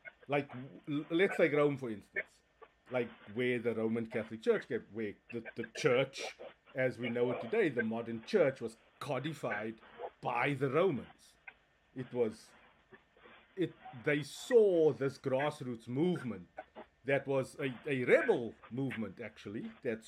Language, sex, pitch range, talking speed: English, male, 120-155 Hz, 135 wpm